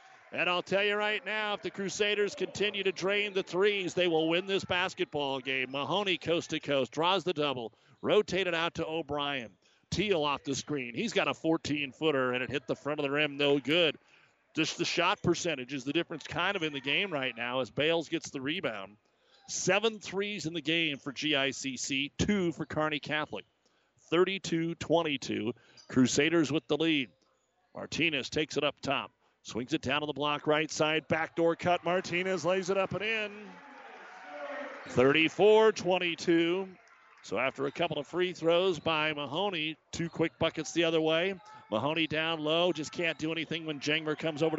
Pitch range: 145-180 Hz